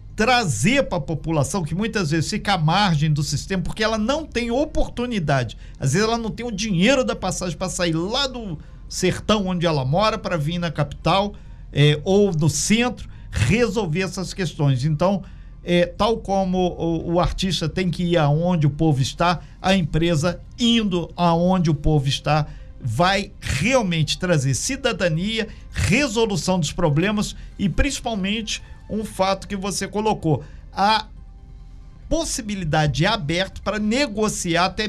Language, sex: Portuguese, male